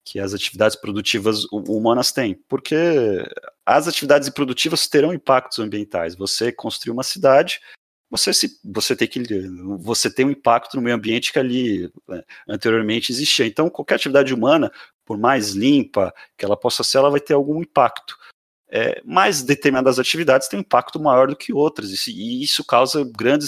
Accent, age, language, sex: Brazilian, 40-59, Portuguese, male